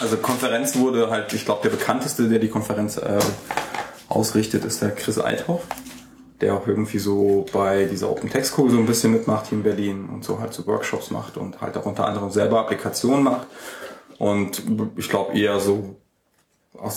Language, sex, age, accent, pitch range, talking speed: German, male, 20-39, German, 100-110 Hz, 185 wpm